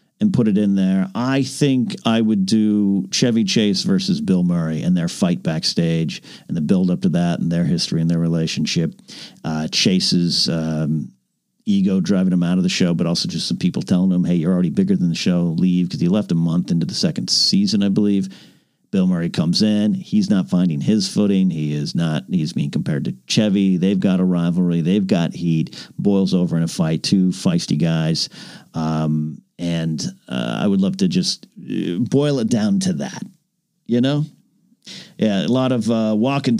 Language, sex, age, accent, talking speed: English, male, 50-69, American, 200 wpm